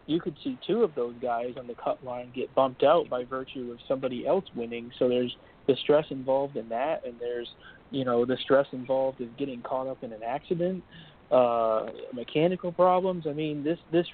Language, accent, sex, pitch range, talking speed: English, American, male, 125-145 Hz, 205 wpm